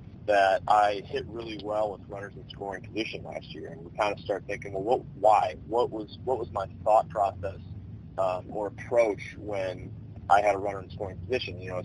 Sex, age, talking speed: male, 30-49, 210 wpm